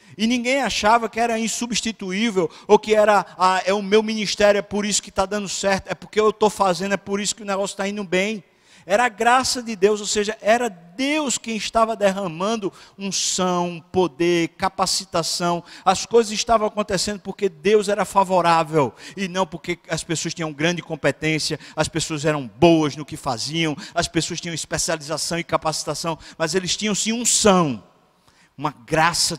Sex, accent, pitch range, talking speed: male, Brazilian, 175-225 Hz, 180 wpm